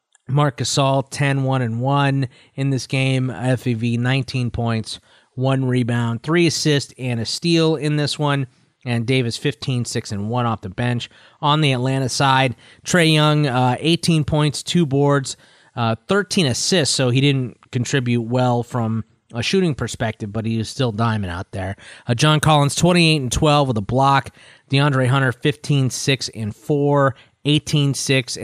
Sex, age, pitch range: male, 30-49, 120-150 Hz